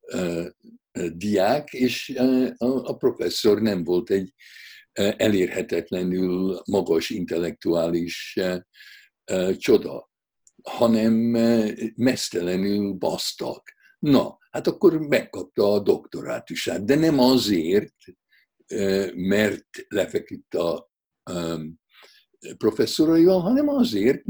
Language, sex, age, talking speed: Hungarian, male, 60-79, 70 wpm